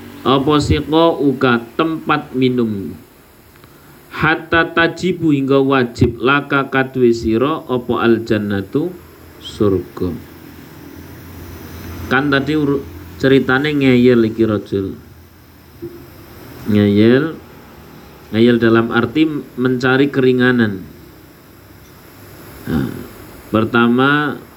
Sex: male